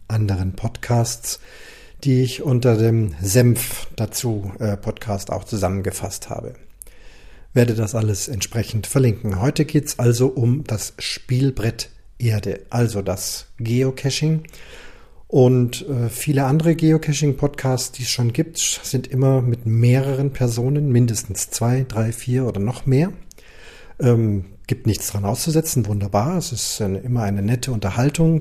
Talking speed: 135 wpm